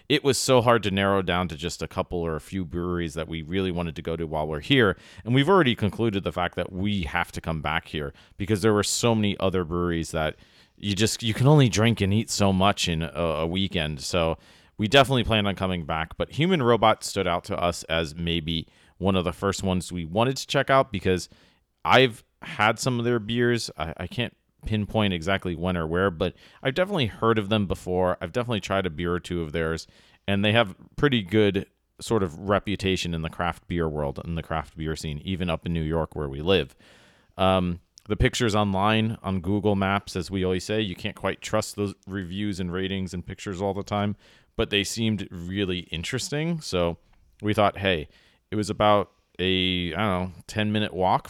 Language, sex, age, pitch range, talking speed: English, male, 40-59, 85-110 Hz, 215 wpm